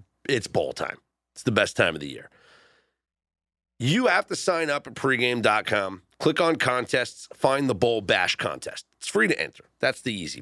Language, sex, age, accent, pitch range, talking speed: English, male, 40-59, American, 125-185 Hz, 185 wpm